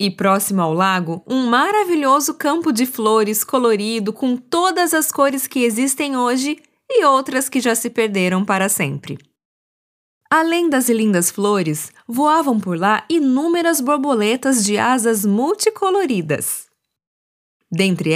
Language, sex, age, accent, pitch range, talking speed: Portuguese, female, 20-39, Brazilian, 195-290 Hz, 125 wpm